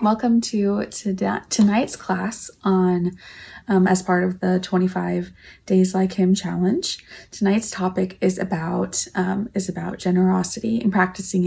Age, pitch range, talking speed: 20-39, 185-220 Hz, 130 wpm